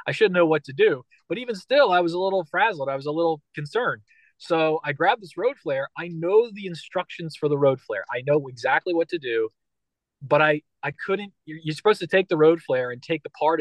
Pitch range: 145-195 Hz